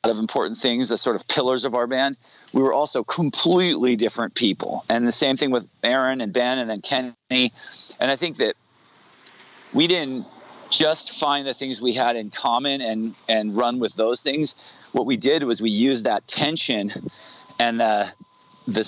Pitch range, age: 115-135 Hz, 40-59